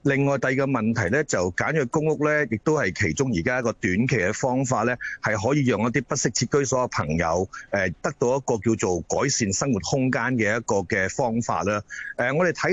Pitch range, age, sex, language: 110-140 Hz, 30-49, male, Chinese